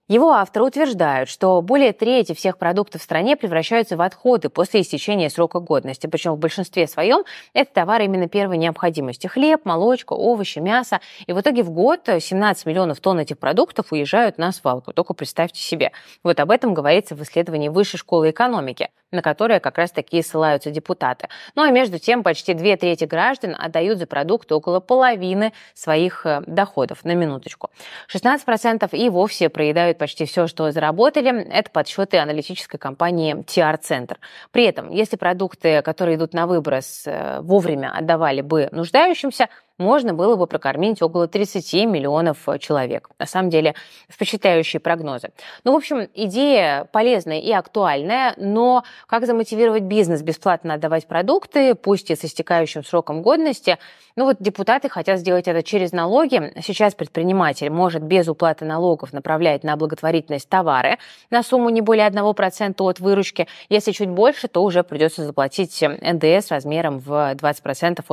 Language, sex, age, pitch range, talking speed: Russian, female, 20-39, 160-215 Hz, 150 wpm